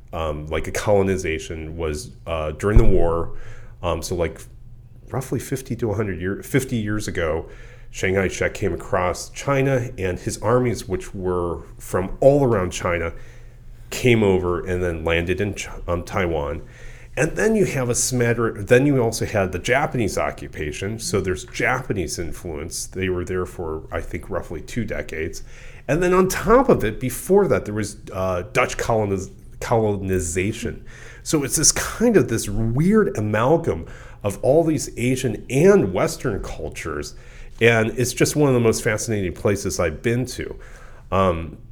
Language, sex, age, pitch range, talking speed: English, male, 30-49, 95-125 Hz, 160 wpm